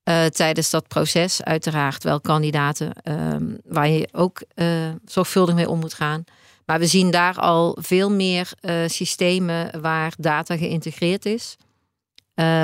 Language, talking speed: Dutch, 145 wpm